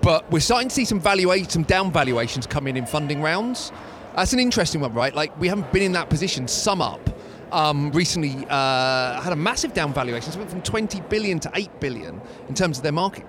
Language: English